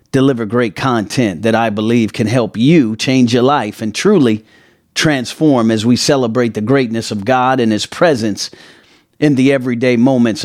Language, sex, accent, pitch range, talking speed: English, male, American, 115-150 Hz, 165 wpm